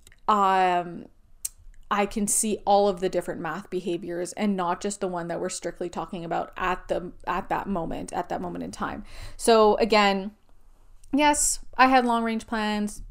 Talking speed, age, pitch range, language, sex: 175 wpm, 20-39, 175-220 Hz, English, female